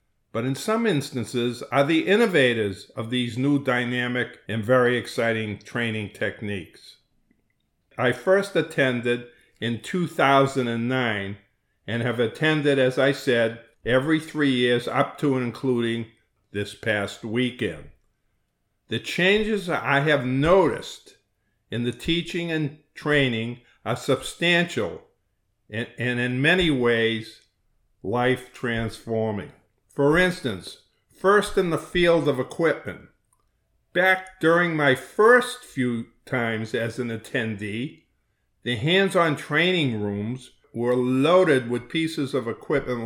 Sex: male